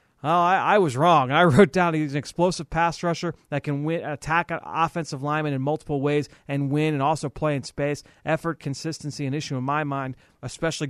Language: English